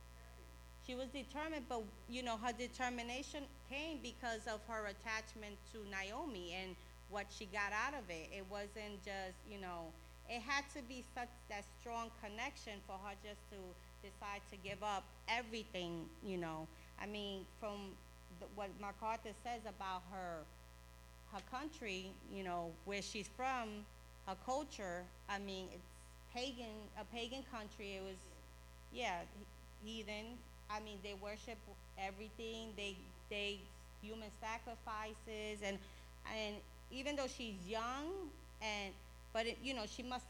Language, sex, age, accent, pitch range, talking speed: English, female, 30-49, American, 195-245 Hz, 145 wpm